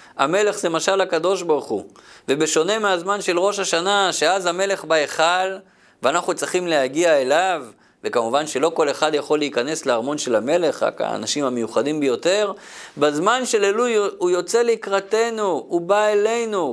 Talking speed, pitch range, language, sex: 145 wpm, 165-215 Hz, Hebrew, male